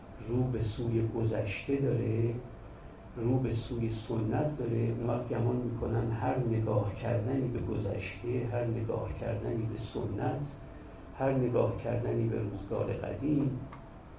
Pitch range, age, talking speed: 110-130 Hz, 50-69, 120 wpm